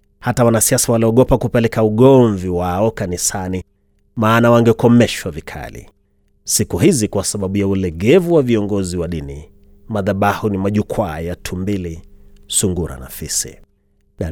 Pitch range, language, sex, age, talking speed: 95-130 Hz, Swahili, male, 30-49, 120 wpm